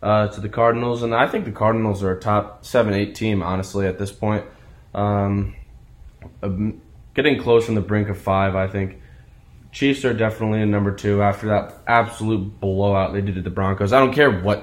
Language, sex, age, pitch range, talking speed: English, male, 10-29, 100-120 Hz, 195 wpm